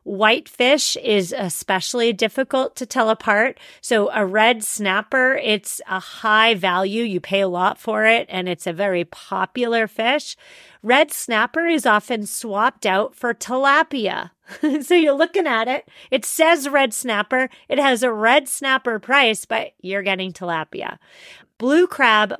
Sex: female